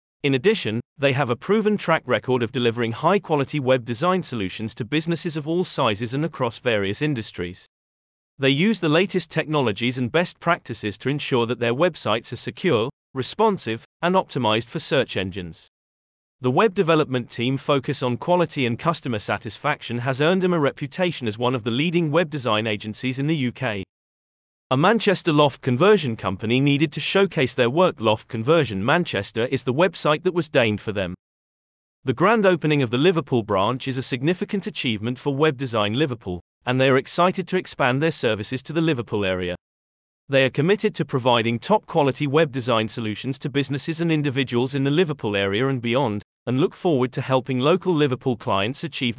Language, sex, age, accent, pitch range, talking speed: English, male, 30-49, British, 115-160 Hz, 180 wpm